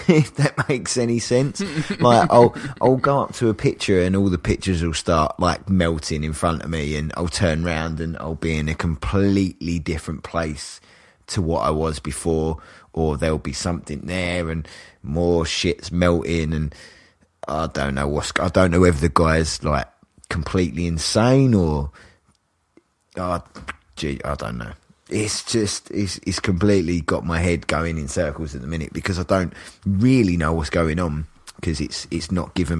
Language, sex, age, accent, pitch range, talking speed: English, male, 20-39, British, 80-95 Hz, 180 wpm